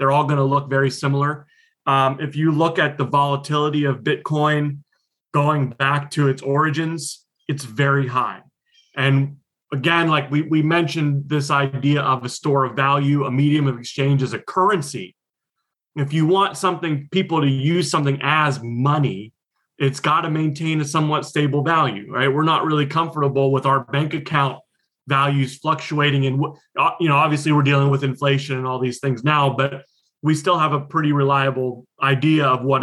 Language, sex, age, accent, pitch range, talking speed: English, male, 30-49, American, 135-155 Hz, 175 wpm